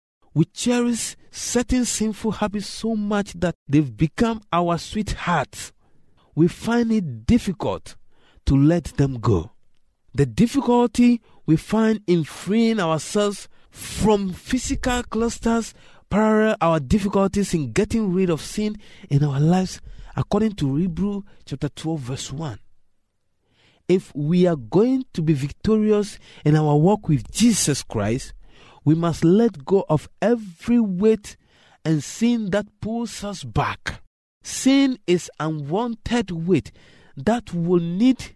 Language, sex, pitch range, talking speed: English, male, 150-220 Hz, 125 wpm